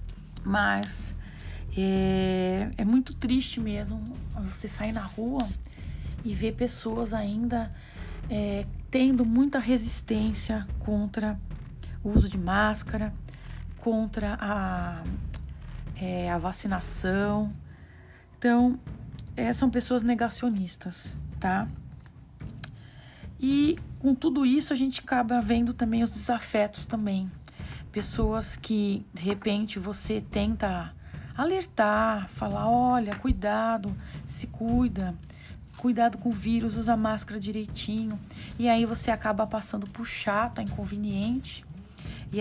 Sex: female